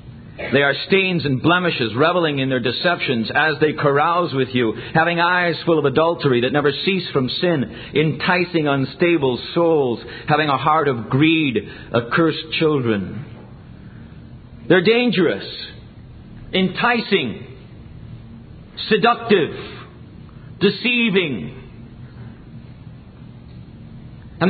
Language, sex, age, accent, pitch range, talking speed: English, male, 50-69, American, 130-195 Hz, 100 wpm